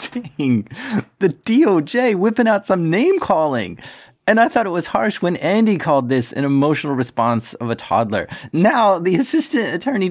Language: English